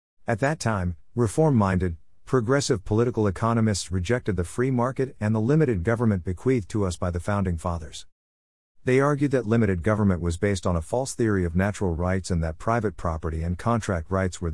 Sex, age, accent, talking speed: male, 50-69, American, 180 wpm